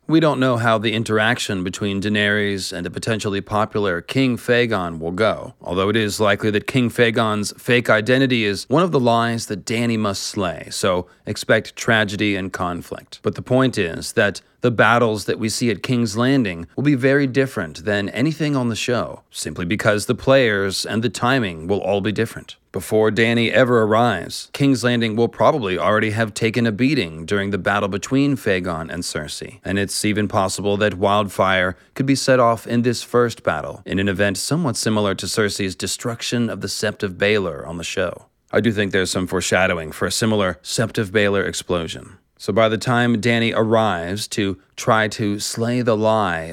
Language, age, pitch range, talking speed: English, 40-59, 100-120 Hz, 190 wpm